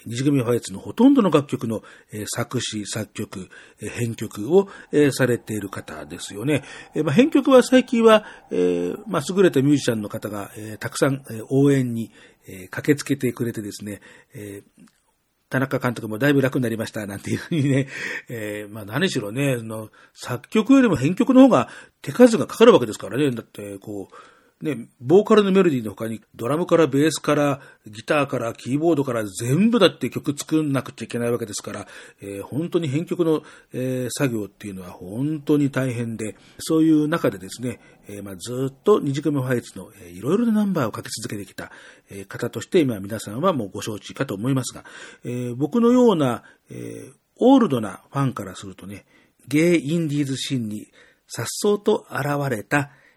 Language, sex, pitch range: Japanese, male, 110-160 Hz